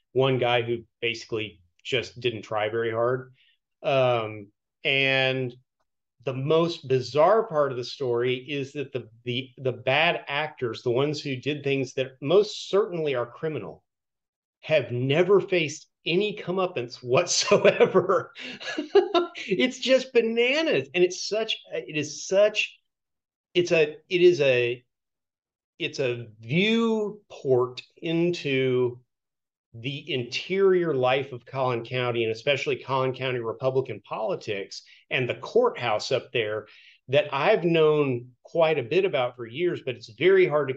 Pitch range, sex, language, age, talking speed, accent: 125-200 Hz, male, English, 40-59, 130 wpm, American